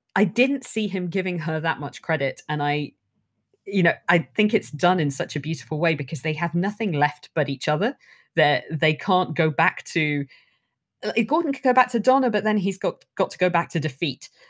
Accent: British